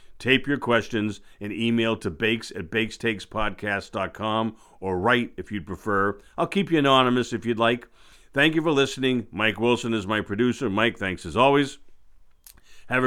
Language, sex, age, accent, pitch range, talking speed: English, male, 50-69, American, 110-125 Hz, 160 wpm